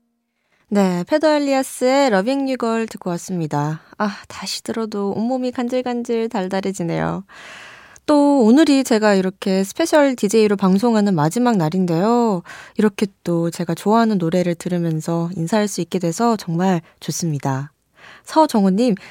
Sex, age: female, 20-39